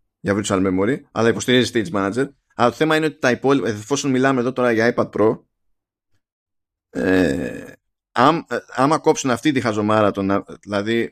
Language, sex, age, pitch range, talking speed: Greek, male, 20-39, 100-135 Hz, 160 wpm